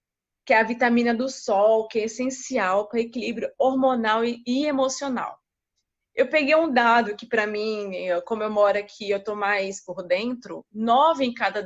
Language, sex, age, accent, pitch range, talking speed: Portuguese, female, 20-39, Brazilian, 205-255 Hz, 175 wpm